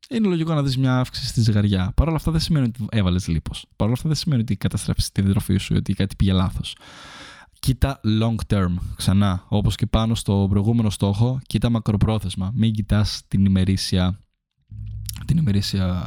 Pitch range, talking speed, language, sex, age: 100-125 Hz, 175 wpm, Greek, male, 20-39